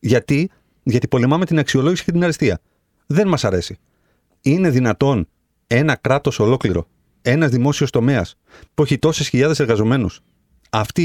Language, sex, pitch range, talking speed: Greek, male, 105-145 Hz, 135 wpm